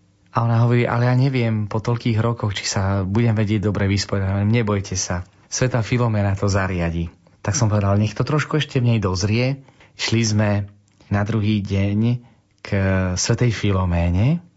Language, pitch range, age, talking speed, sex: Slovak, 95-115 Hz, 30-49, 160 wpm, male